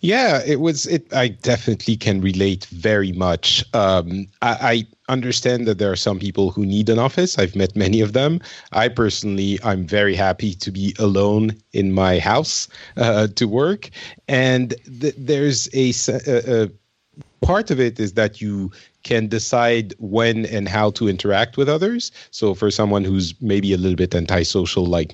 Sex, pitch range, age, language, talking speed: male, 95-125 Hz, 40-59, English, 170 wpm